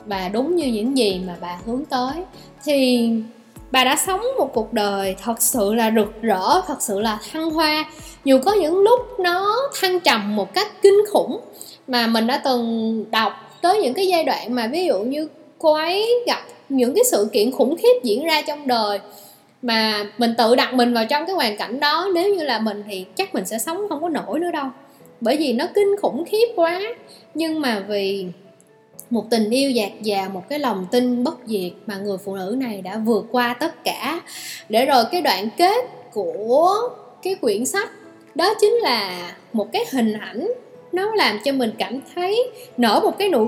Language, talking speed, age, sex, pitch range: Vietnamese, 200 wpm, 20-39, female, 225-350 Hz